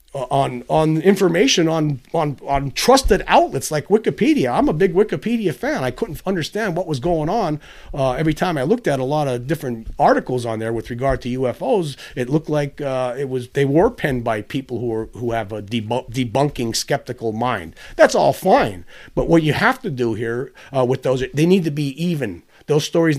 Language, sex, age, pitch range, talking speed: English, male, 40-59, 125-165 Hz, 205 wpm